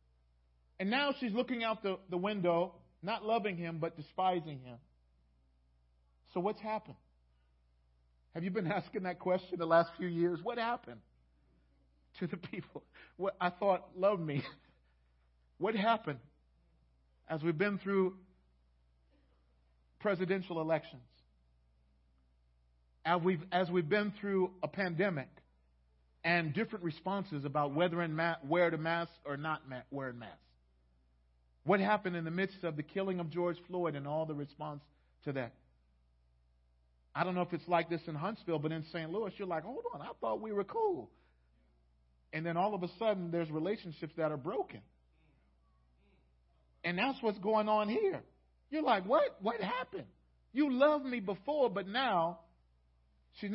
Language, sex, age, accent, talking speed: English, male, 50-69, American, 155 wpm